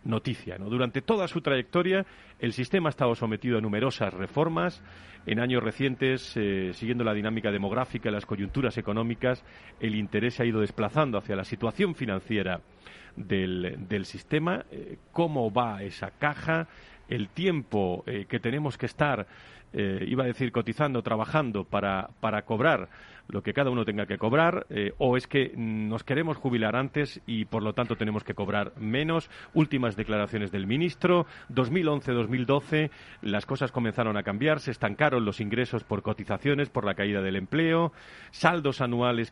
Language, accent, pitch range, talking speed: Spanish, Spanish, 105-140 Hz, 160 wpm